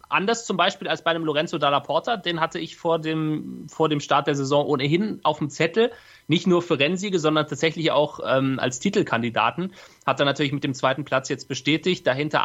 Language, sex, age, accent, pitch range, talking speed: German, male, 30-49, German, 135-165 Hz, 205 wpm